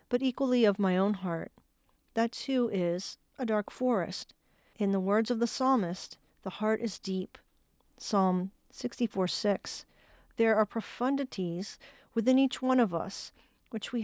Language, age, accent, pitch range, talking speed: English, 50-69, American, 195-245 Hz, 150 wpm